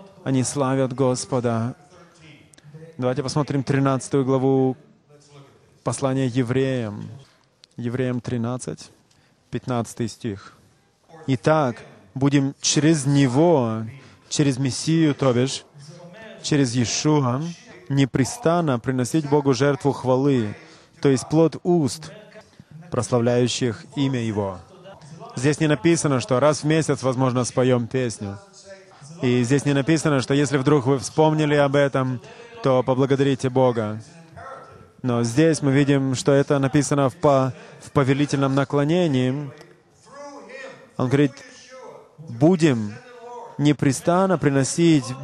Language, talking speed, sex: English, 100 wpm, male